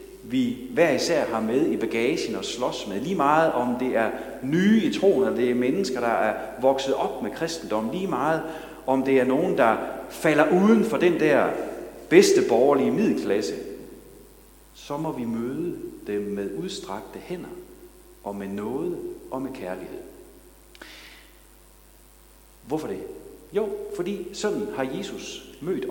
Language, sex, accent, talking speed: Danish, male, native, 145 wpm